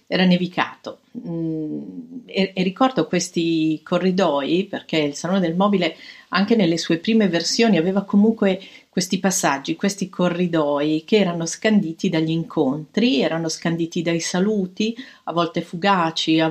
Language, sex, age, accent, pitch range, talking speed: Italian, female, 50-69, native, 160-200 Hz, 125 wpm